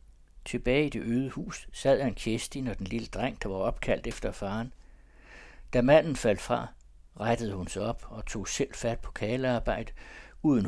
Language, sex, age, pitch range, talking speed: Danish, male, 60-79, 95-125 Hz, 180 wpm